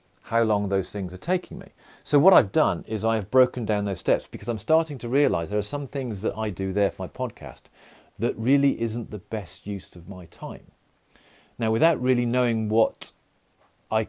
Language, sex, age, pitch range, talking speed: English, male, 40-59, 100-130 Hz, 205 wpm